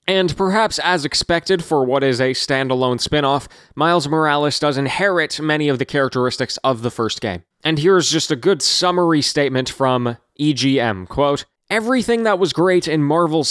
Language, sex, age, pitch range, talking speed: English, male, 20-39, 125-165 Hz, 165 wpm